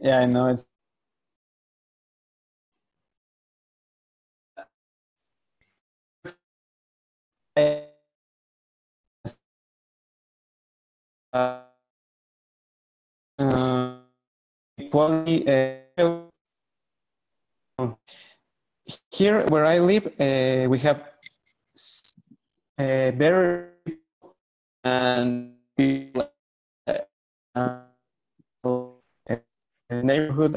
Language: English